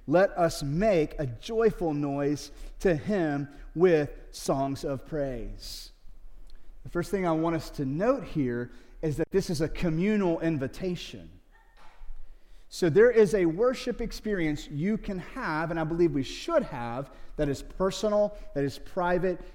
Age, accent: 30-49, American